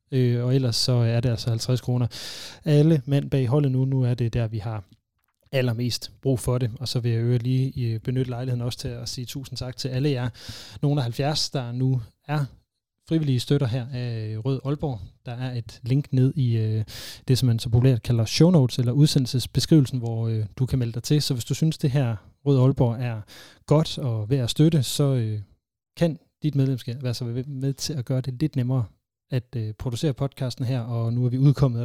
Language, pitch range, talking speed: Danish, 115-135 Hz, 220 wpm